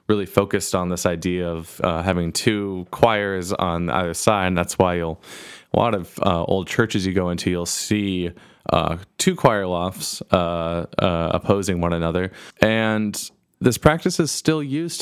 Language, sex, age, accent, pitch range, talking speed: English, male, 20-39, American, 90-105 Hz, 170 wpm